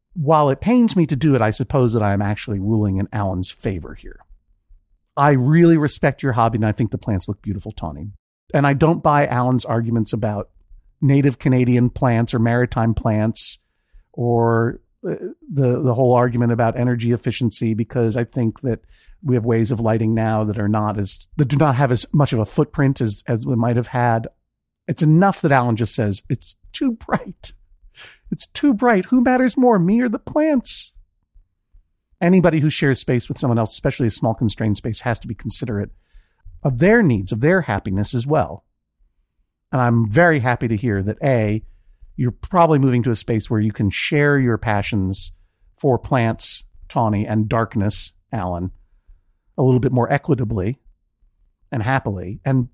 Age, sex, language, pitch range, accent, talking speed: 50-69, male, English, 105-140 Hz, American, 180 wpm